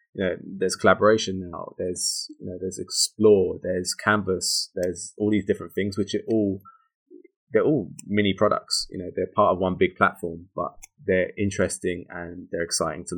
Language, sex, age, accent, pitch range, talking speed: English, male, 20-39, British, 90-105 Hz, 170 wpm